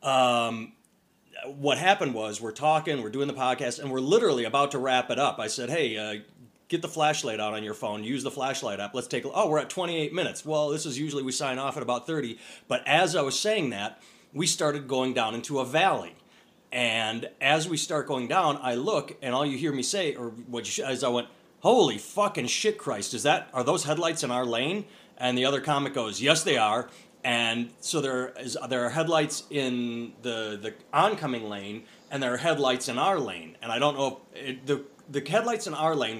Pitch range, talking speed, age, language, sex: 120-150 Hz, 225 wpm, 30-49, English, male